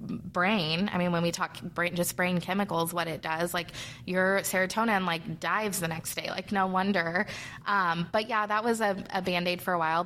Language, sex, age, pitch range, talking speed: English, female, 20-39, 170-200 Hz, 210 wpm